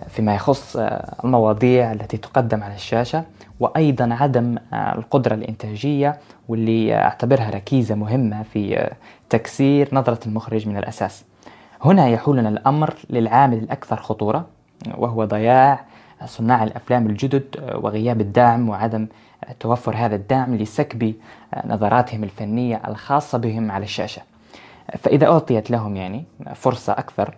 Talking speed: 110 wpm